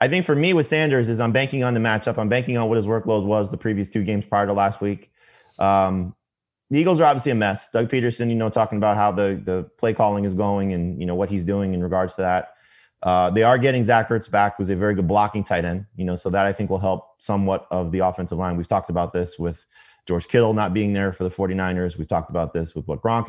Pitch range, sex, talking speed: 95-115 Hz, male, 270 wpm